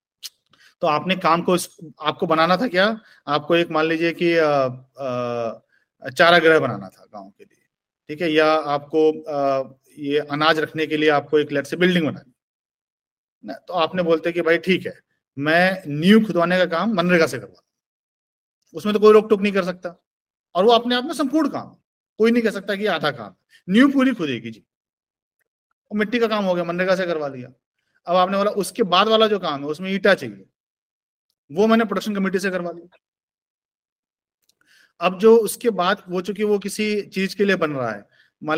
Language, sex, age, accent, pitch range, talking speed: Hindi, male, 40-59, native, 155-215 Hz, 195 wpm